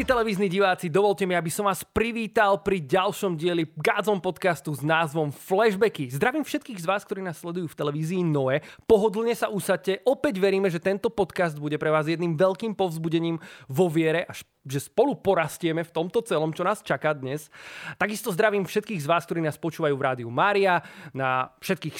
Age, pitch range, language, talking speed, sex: 20-39, 145-200 Hz, Slovak, 180 wpm, male